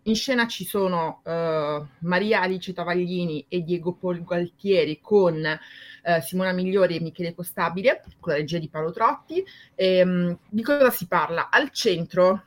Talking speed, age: 155 wpm, 30-49